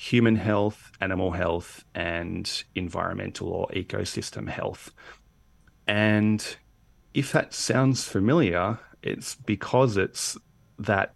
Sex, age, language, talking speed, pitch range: male, 30-49, English, 95 wpm, 90-105 Hz